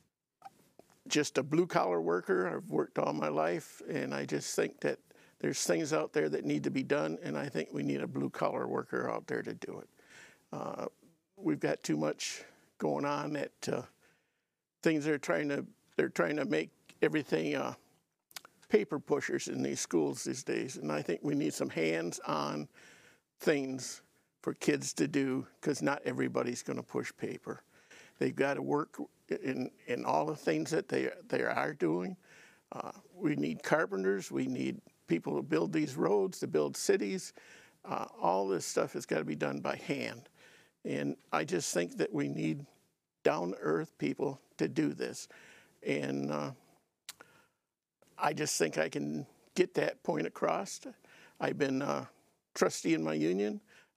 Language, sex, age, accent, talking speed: English, male, 50-69, American, 165 wpm